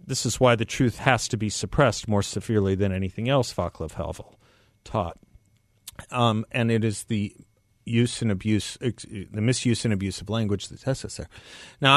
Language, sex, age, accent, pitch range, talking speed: English, male, 50-69, American, 105-135 Hz, 165 wpm